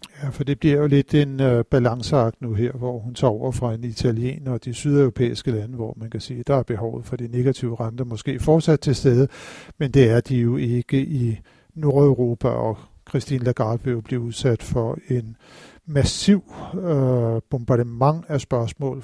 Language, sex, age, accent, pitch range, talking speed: Danish, male, 50-69, native, 115-140 Hz, 185 wpm